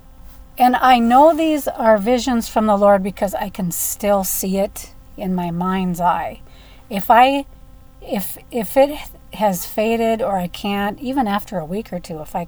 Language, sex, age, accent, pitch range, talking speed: English, female, 40-59, American, 190-255 Hz, 180 wpm